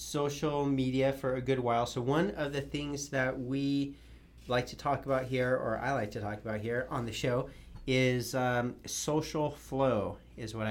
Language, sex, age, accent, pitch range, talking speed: English, male, 30-49, American, 115-135 Hz, 190 wpm